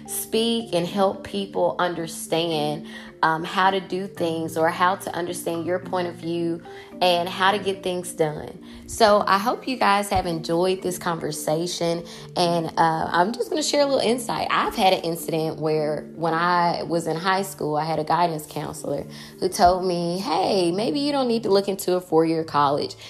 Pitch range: 160-195 Hz